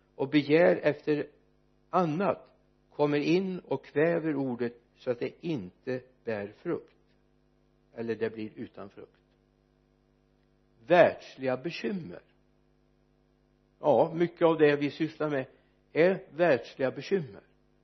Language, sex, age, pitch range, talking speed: Swedish, male, 60-79, 90-150 Hz, 110 wpm